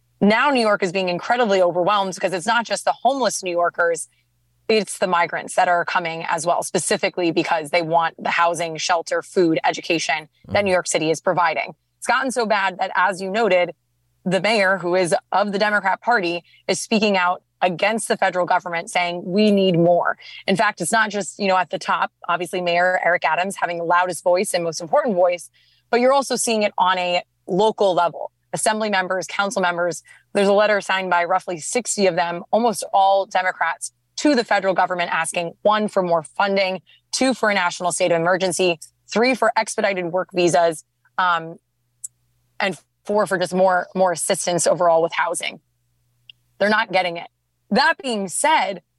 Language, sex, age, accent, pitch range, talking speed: English, female, 20-39, American, 170-205 Hz, 185 wpm